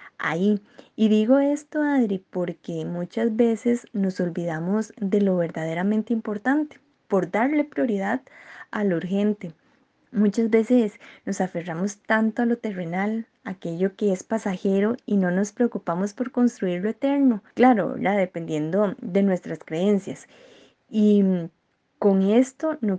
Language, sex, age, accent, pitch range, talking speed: Spanish, female, 20-39, Colombian, 185-240 Hz, 135 wpm